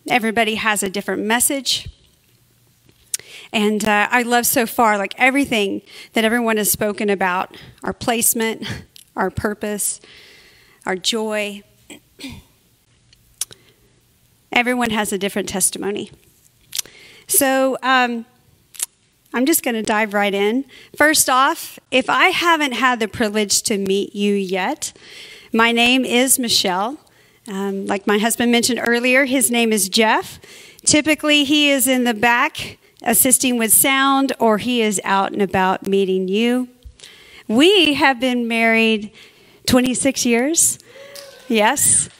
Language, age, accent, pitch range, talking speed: English, 40-59, American, 215-270 Hz, 125 wpm